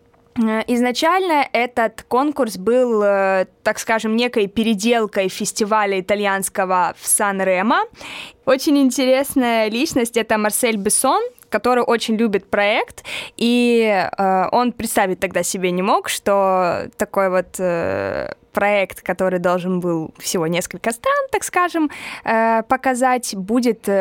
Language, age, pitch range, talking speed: Russian, 20-39, 195-235 Hz, 110 wpm